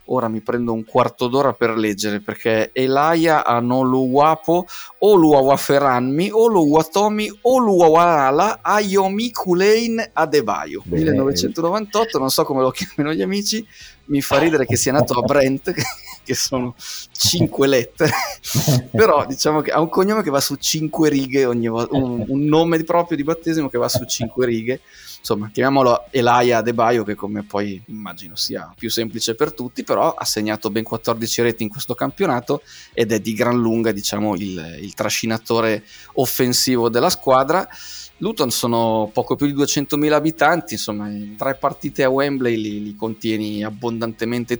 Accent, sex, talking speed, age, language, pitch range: native, male, 155 wpm, 30-49, Italian, 115-155 Hz